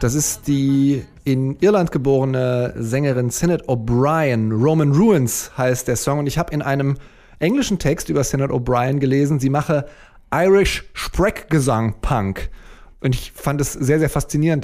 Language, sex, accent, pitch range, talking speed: German, male, German, 135-170 Hz, 150 wpm